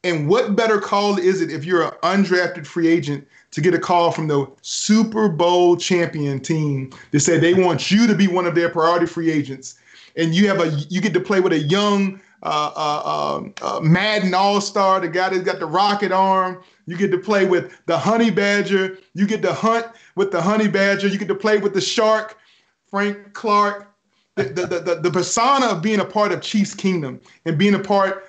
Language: English